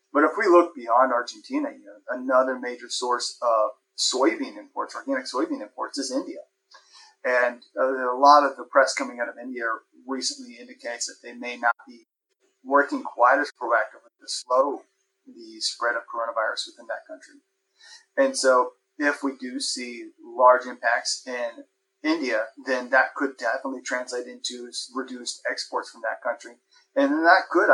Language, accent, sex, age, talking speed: English, American, male, 30-49, 155 wpm